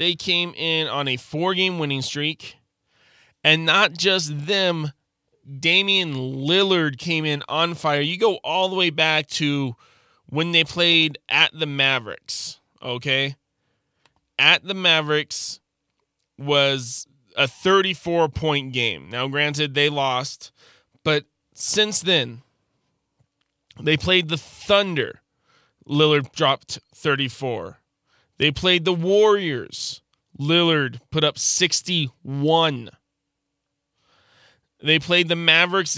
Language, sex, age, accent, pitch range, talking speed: English, male, 20-39, American, 140-185 Hz, 110 wpm